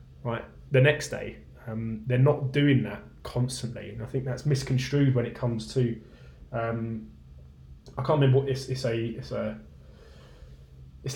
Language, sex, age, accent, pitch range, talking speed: English, male, 20-39, British, 110-130 Hz, 155 wpm